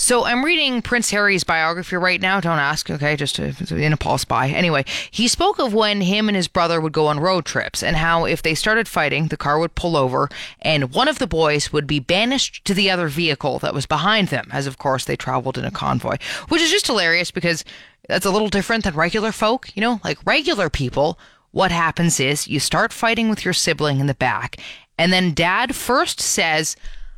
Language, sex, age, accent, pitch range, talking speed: English, female, 20-39, American, 160-230 Hz, 220 wpm